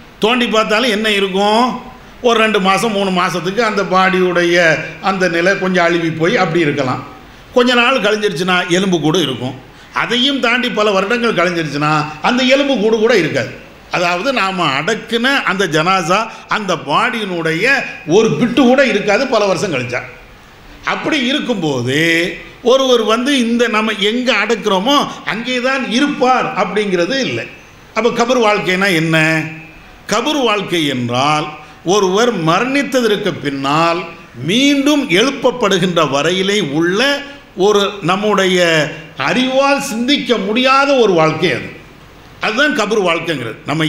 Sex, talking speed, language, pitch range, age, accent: male, 120 wpm, English, 170-240 Hz, 50-69, Indian